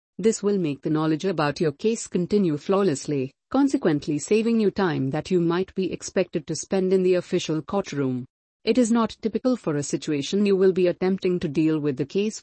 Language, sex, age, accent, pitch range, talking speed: English, female, 50-69, Indian, 155-200 Hz, 200 wpm